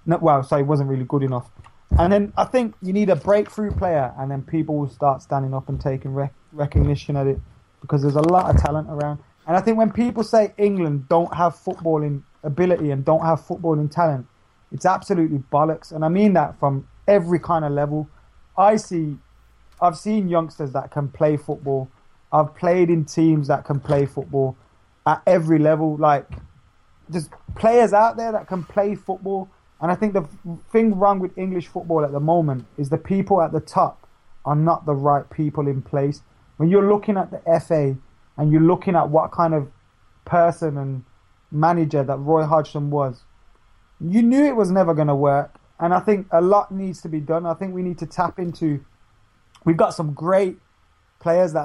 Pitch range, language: 140-175 Hz, English